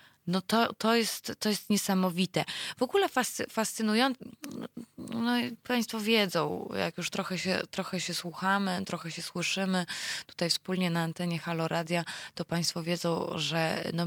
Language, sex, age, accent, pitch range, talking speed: Polish, female, 20-39, native, 160-195 Hz, 155 wpm